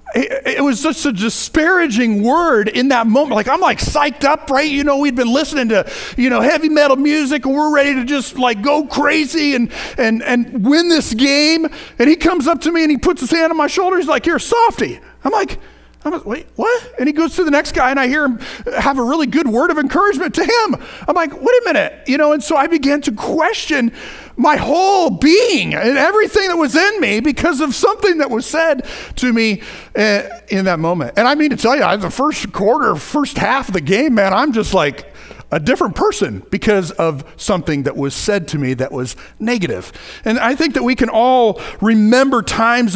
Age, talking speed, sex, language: 30-49, 220 wpm, male, English